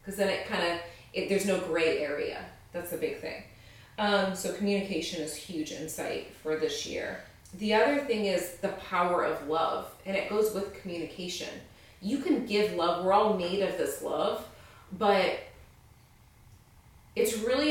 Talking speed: 165 wpm